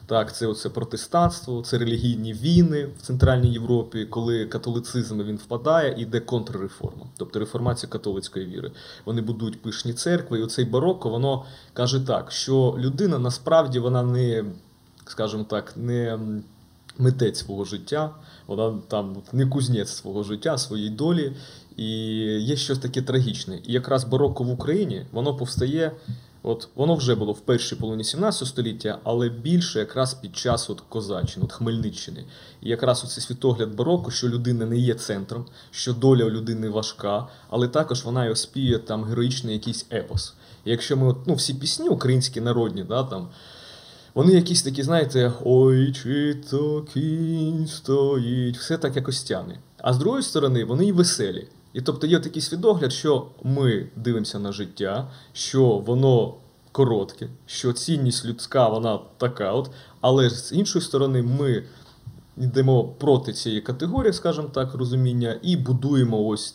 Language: Ukrainian